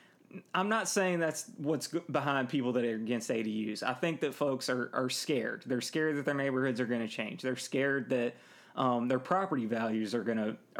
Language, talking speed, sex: English, 205 wpm, male